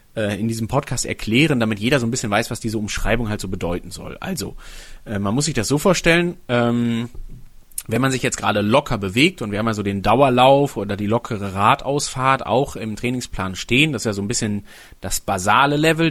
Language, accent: German, German